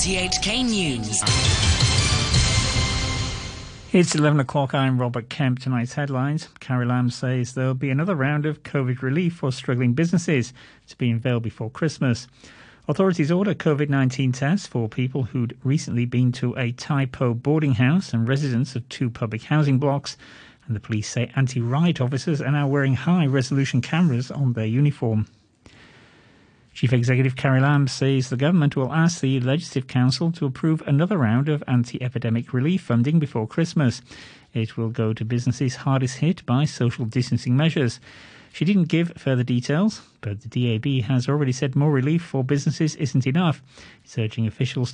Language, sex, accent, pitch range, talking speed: English, male, British, 120-150 Hz, 160 wpm